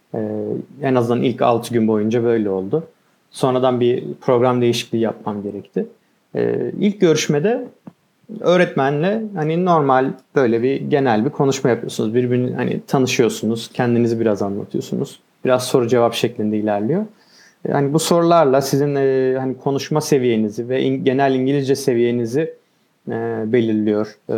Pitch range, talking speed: 115-140 Hz, 120 wpm